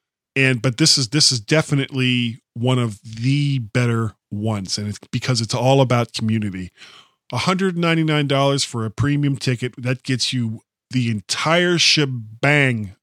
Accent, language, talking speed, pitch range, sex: American, English, 140 wpm, 125-165 Hz, male